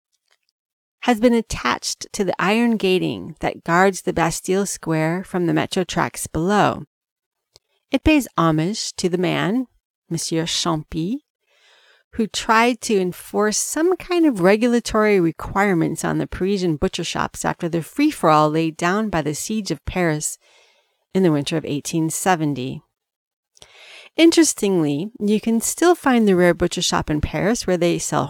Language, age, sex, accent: English, 40-59, female, American